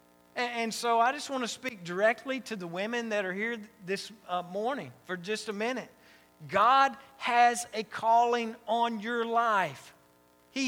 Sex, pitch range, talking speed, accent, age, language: male, 175-230 Hz, 155 wpm, American, 50-69, English